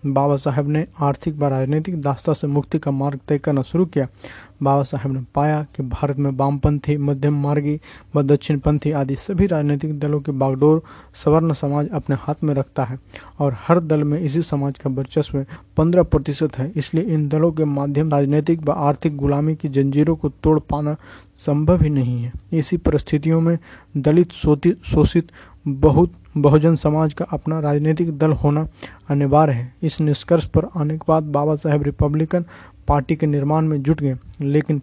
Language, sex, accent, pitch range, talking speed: Hindi, male, native, 140-155 Hz, 175 wpm